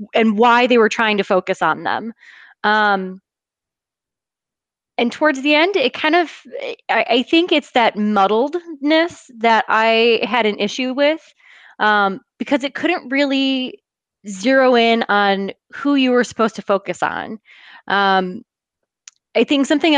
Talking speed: 145 wpm